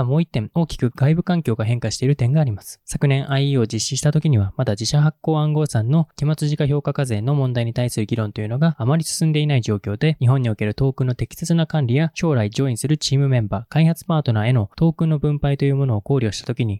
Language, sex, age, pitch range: Japanese, male, 20-39, 120-150 Hz